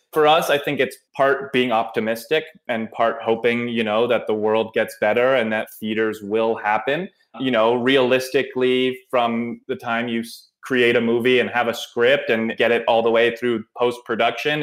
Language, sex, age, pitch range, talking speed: English, male, 20-39, 115-135 Hz, 190 wpm